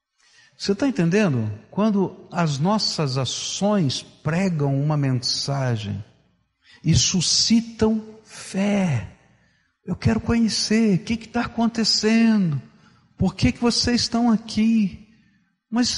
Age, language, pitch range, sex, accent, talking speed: 60-79, Portuguese, 140-215 Hz, male, Brazilian, 105 wpm